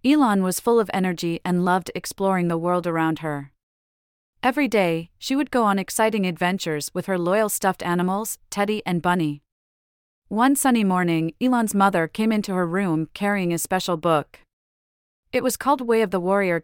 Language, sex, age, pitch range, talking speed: English, female, 30-49, 165-205 Hz, 175 wpm